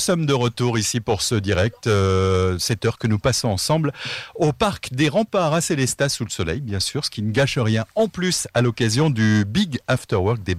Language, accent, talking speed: French, French, 220 wpm